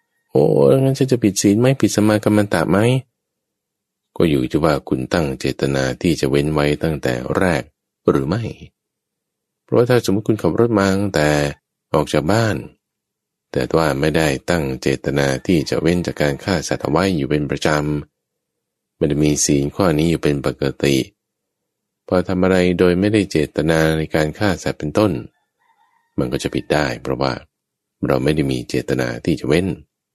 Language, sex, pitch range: English, male, 75-115 Hz